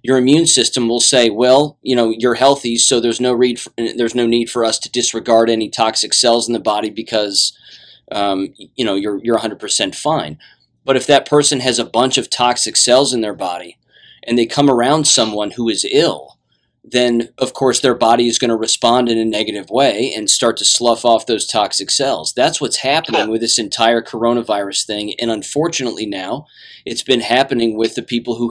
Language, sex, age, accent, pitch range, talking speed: English, male, 30-49, American, 115-135 Hz, 195 wpm